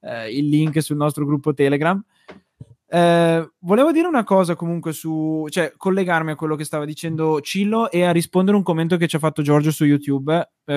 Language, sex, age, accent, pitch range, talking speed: Italian, male, 20-39, native, 140-190 Hz, 200 wpm